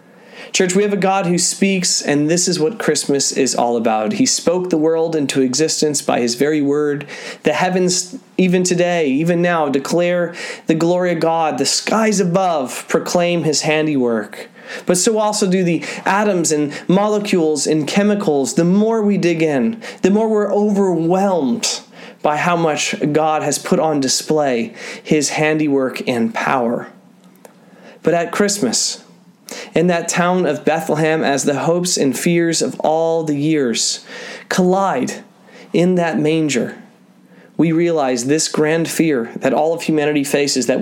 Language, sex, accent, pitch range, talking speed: English, male, American, 150-195 Hz, 155 wpm